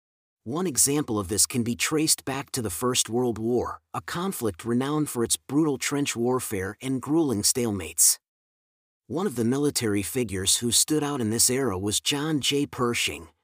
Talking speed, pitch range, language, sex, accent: 175 wpm, 110-145 Hz, English, male, American